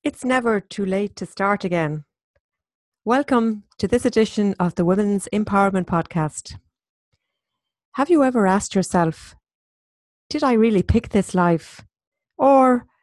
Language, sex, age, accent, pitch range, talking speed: English, female, 40-59, Irish, 185-245 Hz, 130 wpm